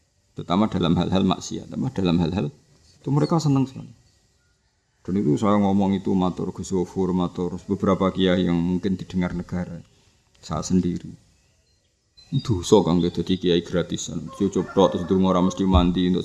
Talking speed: 145 wpm